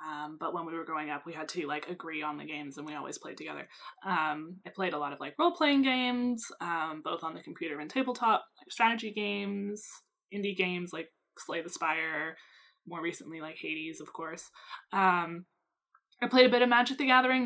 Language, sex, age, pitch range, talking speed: English, female, 20-39, 180-250 Hz, 205 wpm